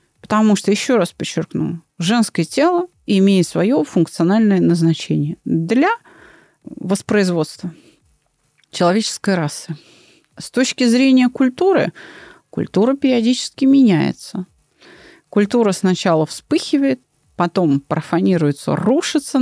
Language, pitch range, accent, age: Russian, 175-255 Hz, native, 30-49